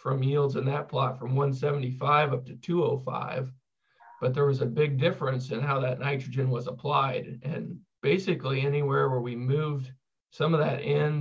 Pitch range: 130-150 Hz